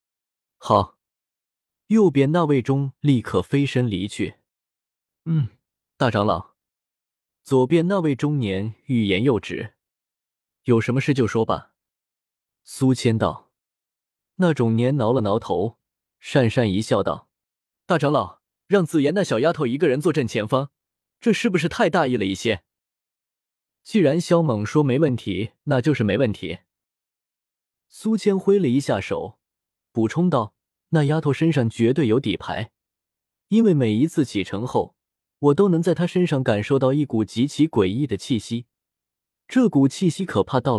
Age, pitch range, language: 20-39, 105-155 Hz, Chinese